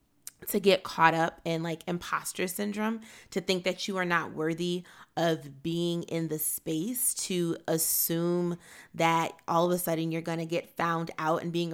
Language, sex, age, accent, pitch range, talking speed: English, female, 20-39, American, 165-190 Hz, 180 wpm